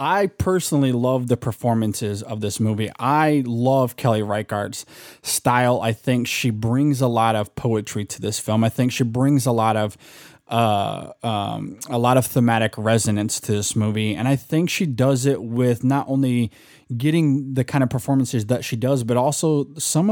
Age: 20-39